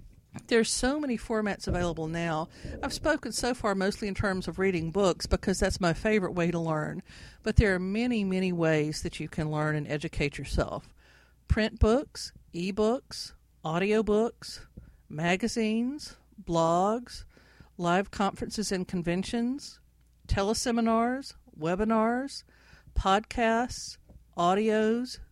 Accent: American